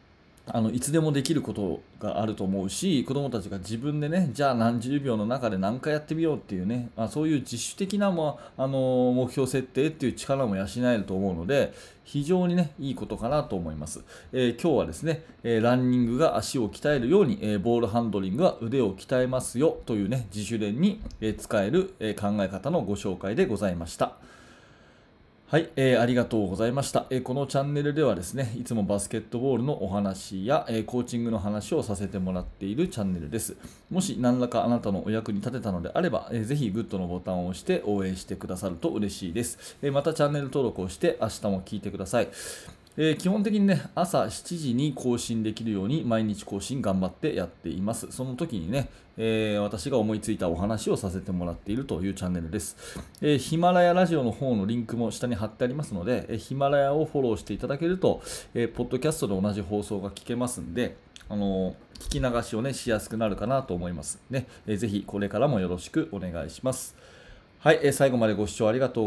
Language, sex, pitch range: Japanese, male, 100-135 Hz